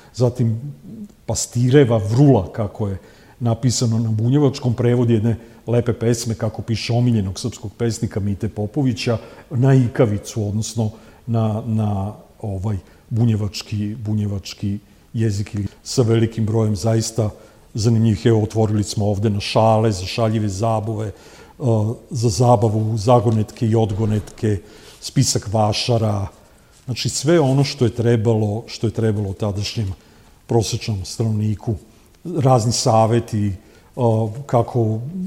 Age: 50-69